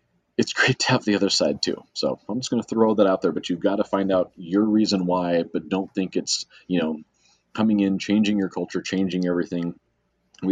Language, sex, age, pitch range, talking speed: English, male, 30-49, 90-115 Hz, 230 wpm